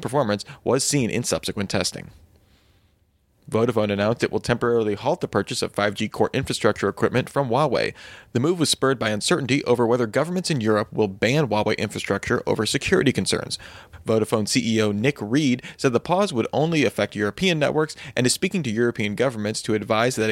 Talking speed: 175 wpm